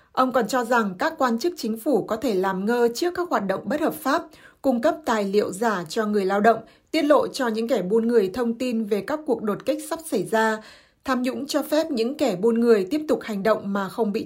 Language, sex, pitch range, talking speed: Vietnamese, female, 210-255 Hz, 255 wpm